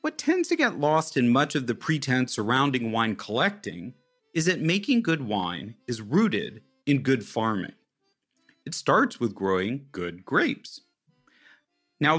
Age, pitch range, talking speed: 40-59, 115-175 Hz, 150 wpm